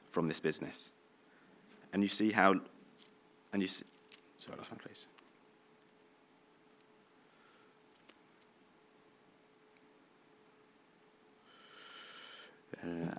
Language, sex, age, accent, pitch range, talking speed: English, male, 30-49, British, 95-115 Hz, 70 wpm